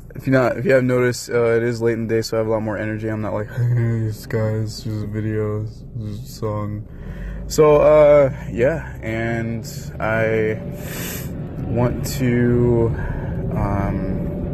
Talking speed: 165 wpm